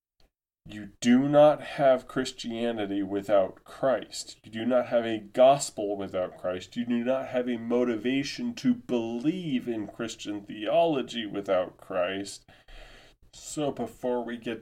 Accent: American